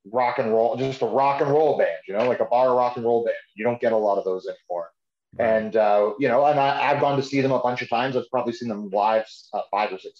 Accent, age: American, 30-49